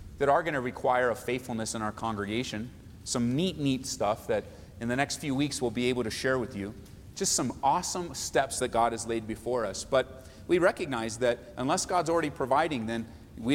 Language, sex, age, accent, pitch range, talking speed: English, male, 30-49, American, 105-145 Hz, 210 wpm